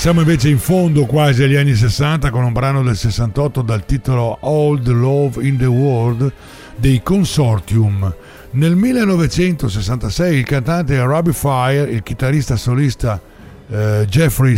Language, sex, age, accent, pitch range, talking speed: Italian, male, 60-79, native, 115-155 Hz, 135 wpm